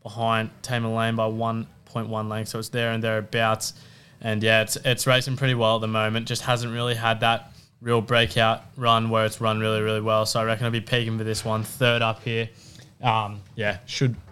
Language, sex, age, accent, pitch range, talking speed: English, male, 20-39, Australian, 110-125 Hz, 210 wpm